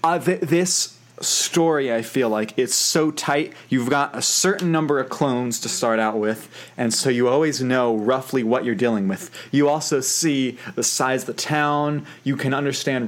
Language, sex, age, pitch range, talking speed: English, male, 20-39, 115-150 Hz, 195 wpm